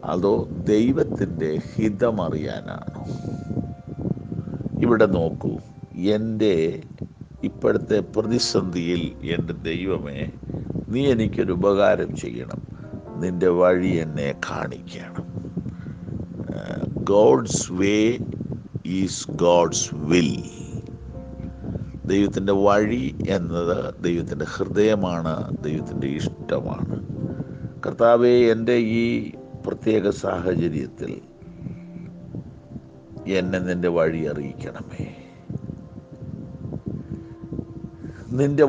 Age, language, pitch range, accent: 50-69, Malayalam, 85-115 Hz, native